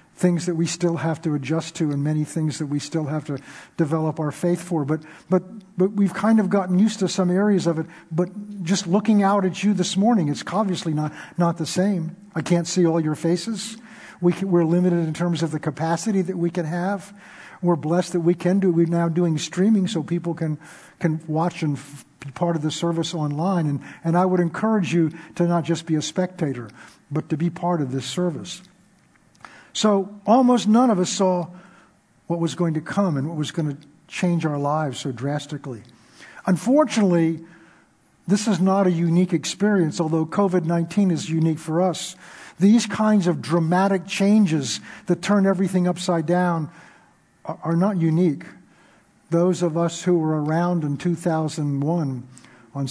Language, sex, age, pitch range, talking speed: English, male, 50-69, 160-185 Hz, 185 wpm